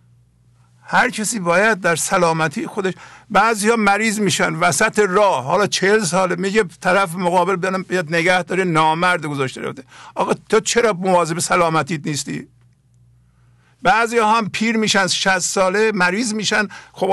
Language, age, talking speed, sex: English, 50-69, 145 wpm, male